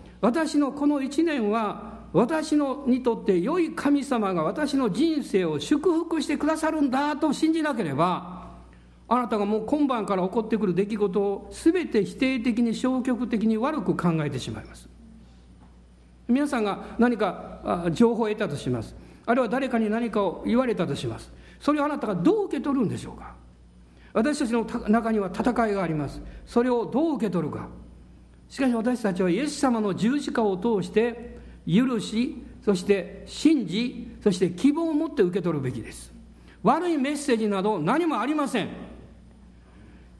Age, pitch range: 60-79, 185-285 Hz